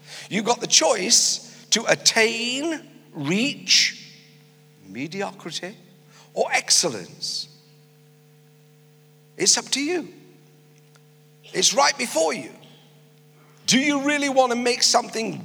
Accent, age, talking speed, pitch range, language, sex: British, 50-69, 95 wpm, 150-195 Hz, English, male